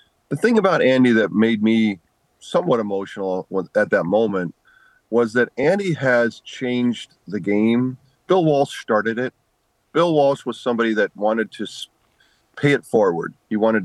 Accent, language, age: American, English, 40-59